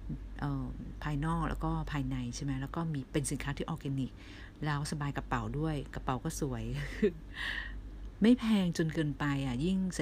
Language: Thai